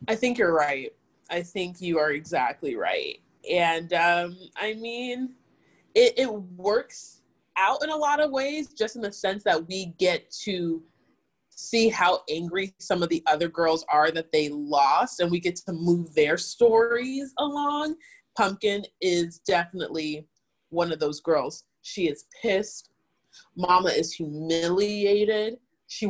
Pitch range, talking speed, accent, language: 170-235 Hz, 150 wpm, American, English